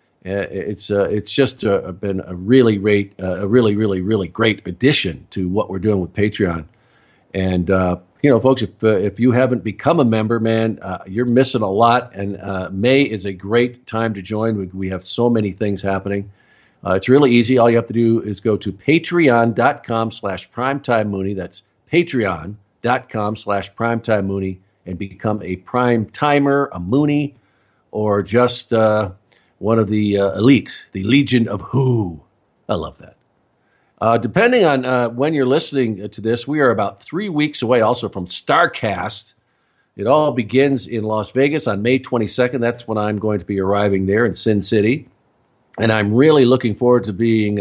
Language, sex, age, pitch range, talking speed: English, male, 50-69, 100-125 Hz, 180 wpm